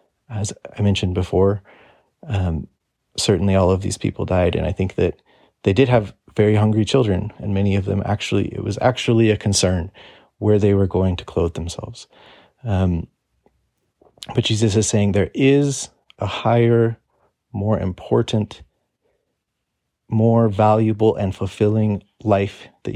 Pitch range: 95-110 Hz